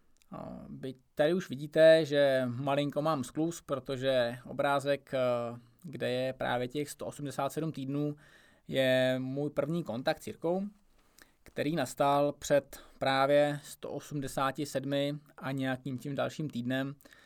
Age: 20-39